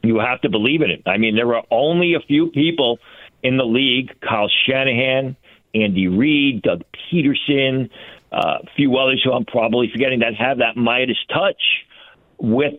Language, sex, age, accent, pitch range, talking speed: English, male, 50-69, American, 115-145 Hz, 175 wpm